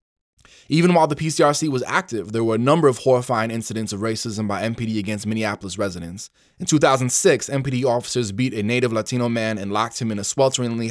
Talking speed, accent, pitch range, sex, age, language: 195 wpm, American, 105-130 Hz, male, 20-39, English